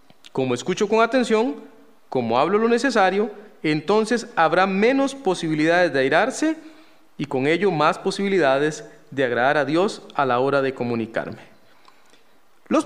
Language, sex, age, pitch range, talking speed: Spanish, male, 40-59, 155-210 Hz, 135 wpm